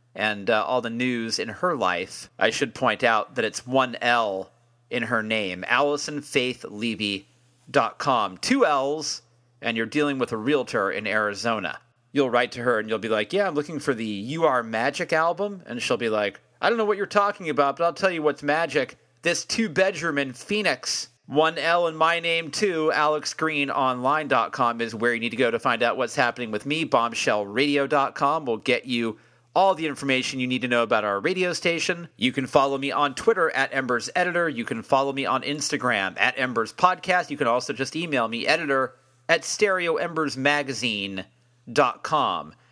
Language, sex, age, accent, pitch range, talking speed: English, male, 40-59, American, 120-160 Hz, 185 wpm